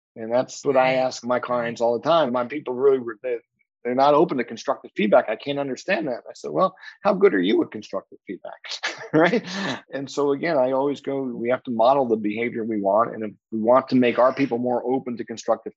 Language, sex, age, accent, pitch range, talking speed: English, male, 40-59, American, 120-145 Hz, 230 wpm